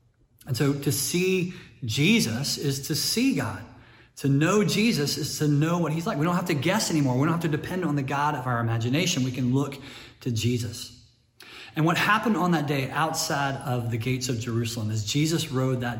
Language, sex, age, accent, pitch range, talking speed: English, male, 30-49, American, 115-145 Hz, 210 wpm